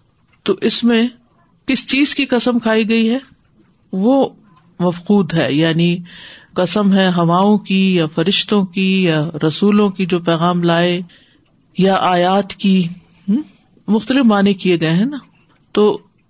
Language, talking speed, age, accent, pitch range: English, 135 wpm, 50-69, Indian, 170-215 Hz